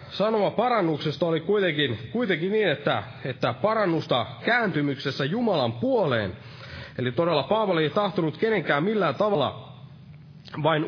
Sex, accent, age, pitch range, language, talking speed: male, native, 30-49, 140-205 Hz, Finnish, 115 wpm